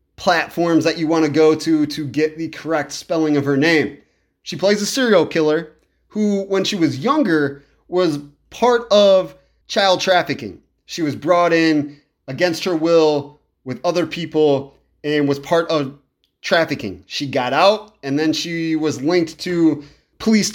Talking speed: 160 wpm